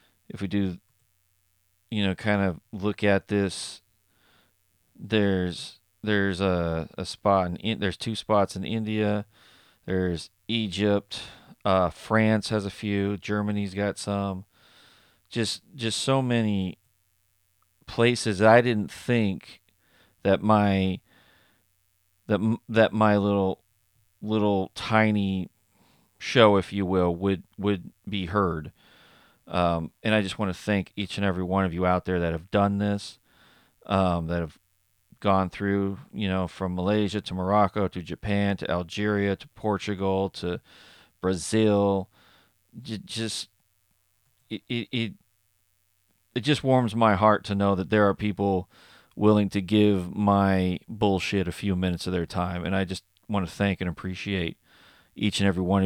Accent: American